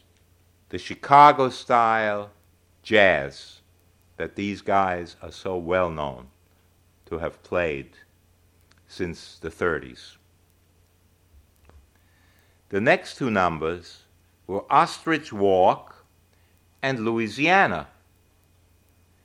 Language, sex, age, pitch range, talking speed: English, male, 60-79, 90-110 Hz, 80 wpm